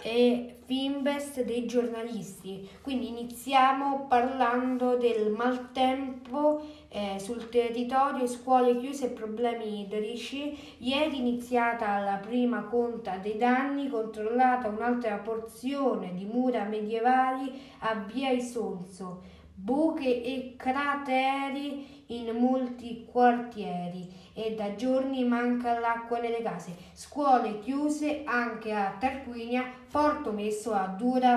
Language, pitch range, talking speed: Italian, 220-260 Hz, 105 wpm